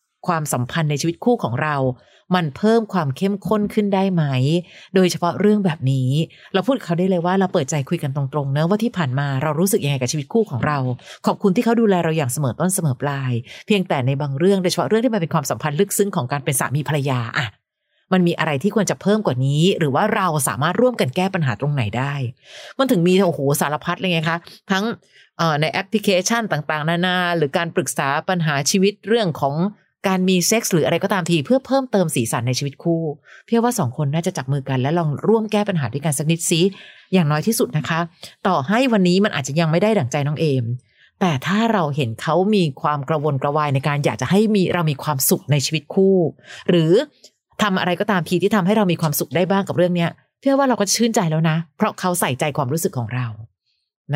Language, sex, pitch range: Thai, female, 145-195 Hz